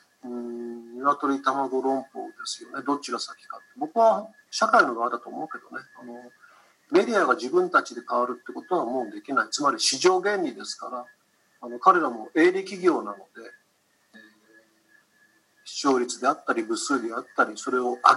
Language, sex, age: Japanese, male, 40-59